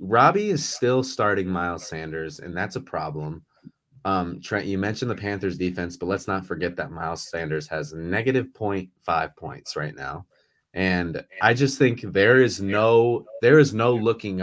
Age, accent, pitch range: 30-49, American, 90-130 Hz